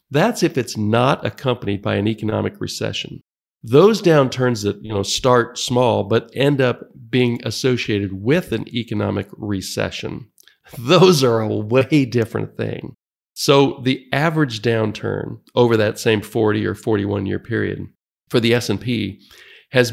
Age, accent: 50-69, American